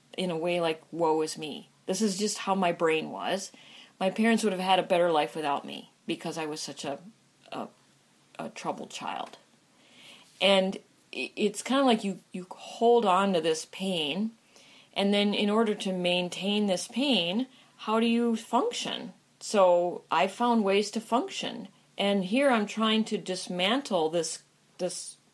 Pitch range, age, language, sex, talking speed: 170-230 Hz, 40-59, English, female, 170 wpm